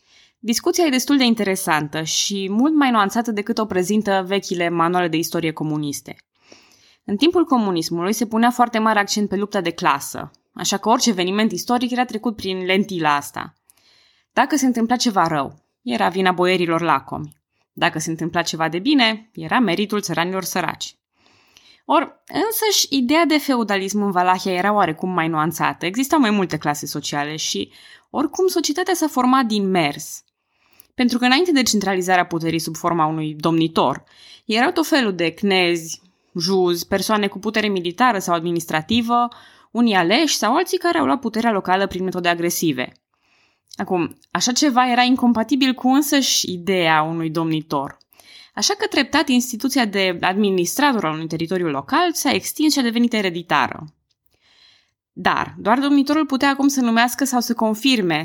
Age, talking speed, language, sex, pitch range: 20-39, 155 wpm, Romanian, female, 170-250 Hz